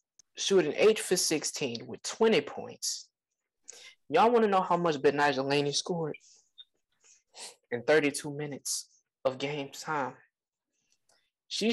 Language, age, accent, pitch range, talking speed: English, 20-39, American, 130-190 Hz, 120 wpm